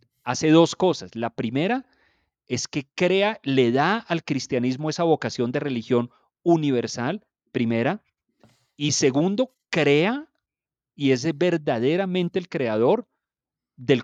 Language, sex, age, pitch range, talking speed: Spanish, male, 40-59, 115-150 Hz, 115 wpm